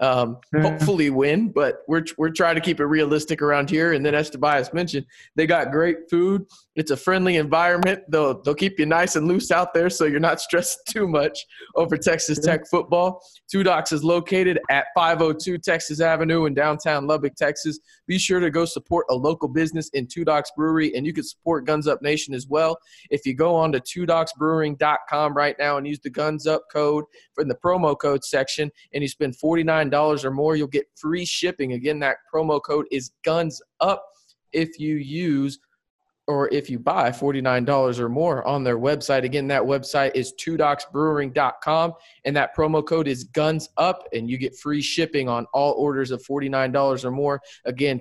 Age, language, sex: 20-39, English, male